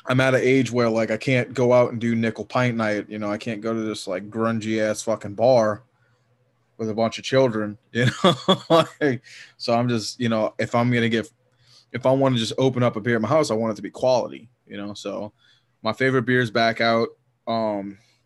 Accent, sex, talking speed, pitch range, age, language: American, male, 235 wpm, 110-125 Hz, 20-39, English